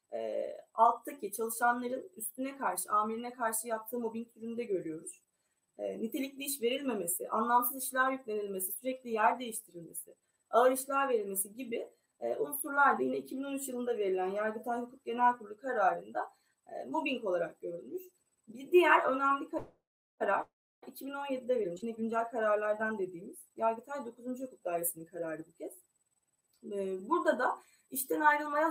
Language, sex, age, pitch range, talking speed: Turkish, female, 20-39, 220-285 Hz, 130 wpm